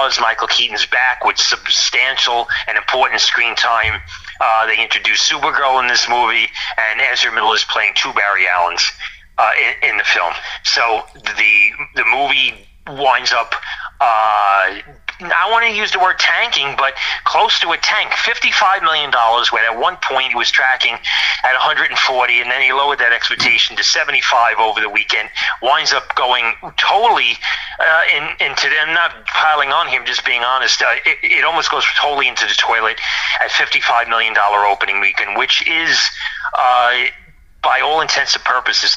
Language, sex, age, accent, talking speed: English, male, 40-59, American, 170 wpm